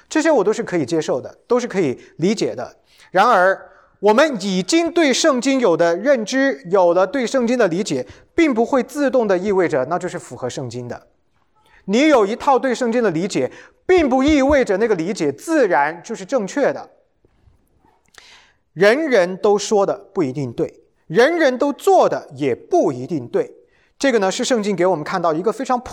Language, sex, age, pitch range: English, male, 30-49, 180-280 Hz